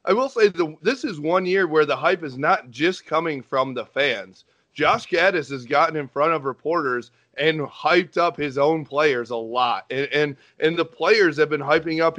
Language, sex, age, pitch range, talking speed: English, male, 30-49, 135-165 Hz, 210 wpm